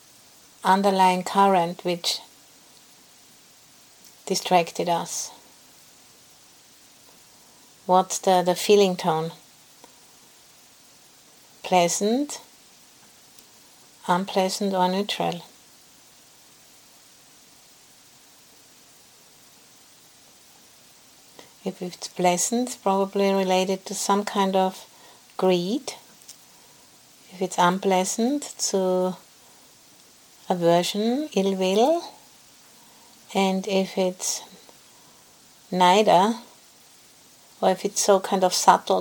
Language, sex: English, female